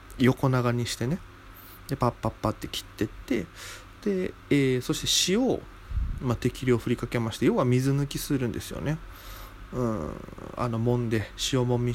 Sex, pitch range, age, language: male, 100-135 Hz, 20-39, Japanese